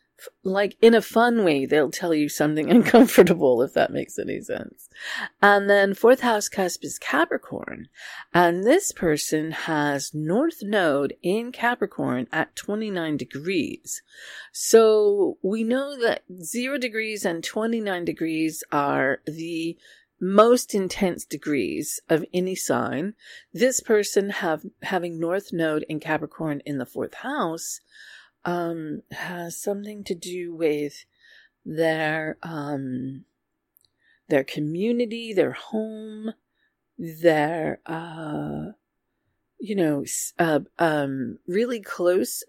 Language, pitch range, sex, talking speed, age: English, 155-225 Hz, female, 115 wpm, 40-59